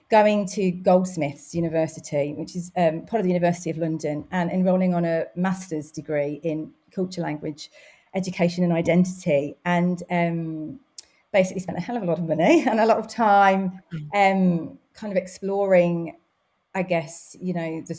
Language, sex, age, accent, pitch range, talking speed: English, female, 40-59, British, 165-190 Hz, 165 wpm